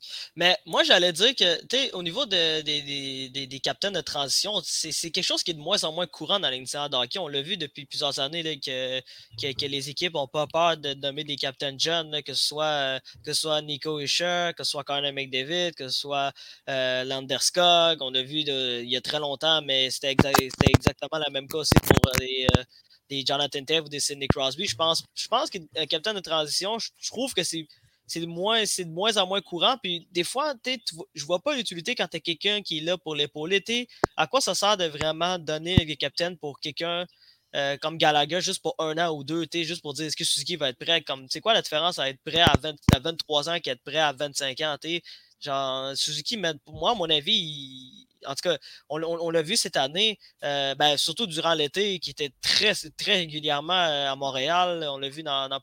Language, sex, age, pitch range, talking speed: French, male, 20-39, 140-175 Hz, 240 wpm